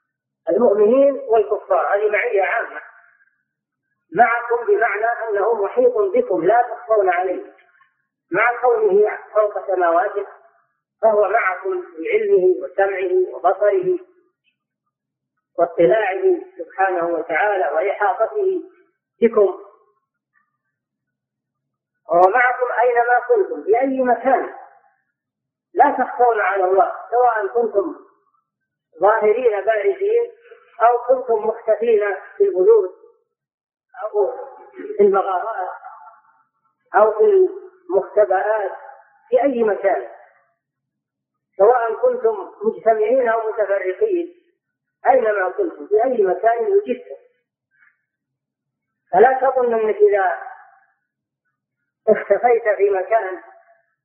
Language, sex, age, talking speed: Arabic, female, 40-59, 80 wpm